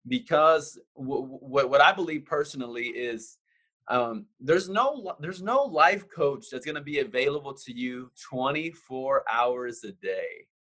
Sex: male